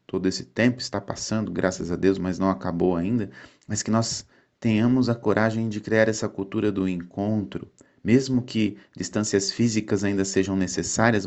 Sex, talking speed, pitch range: male, 165 wpm, 85-105 Hz